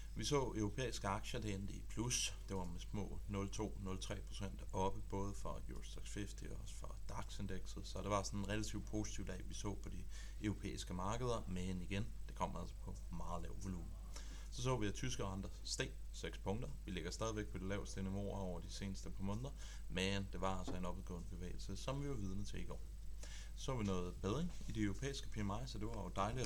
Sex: male